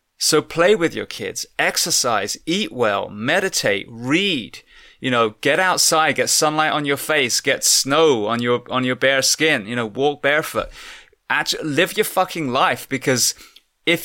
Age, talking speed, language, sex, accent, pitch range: 20-39, 160 wpm, English, male, British, 115-140 Hz